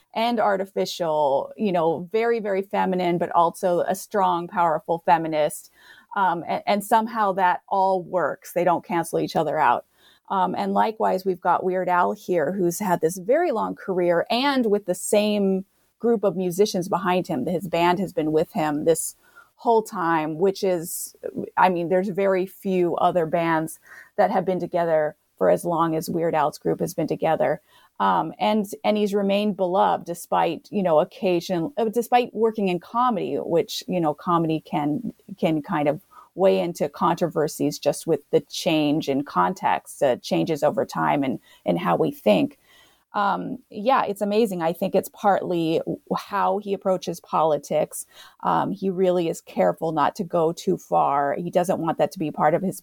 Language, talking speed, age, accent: English, 175 wpm, 30-49, American